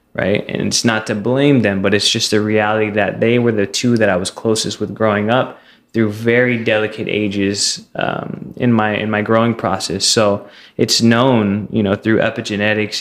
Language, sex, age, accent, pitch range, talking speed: English, male, 20-39, American, 100-115 Hz, 195 wpm